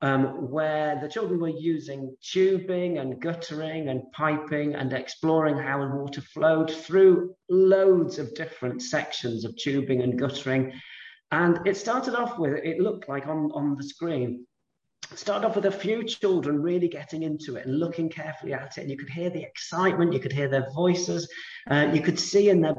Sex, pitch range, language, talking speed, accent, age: male, 140-185 Hz, English, 185 wpm, British, 40-59